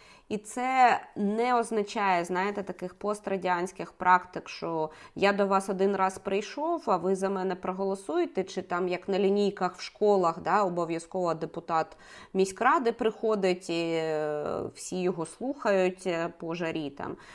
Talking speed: 135 wpm